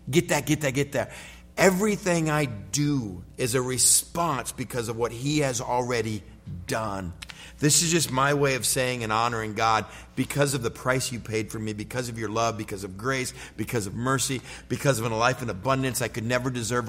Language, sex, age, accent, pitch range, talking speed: English, male, 50-69, American, 110-145 Hz, 205 wpm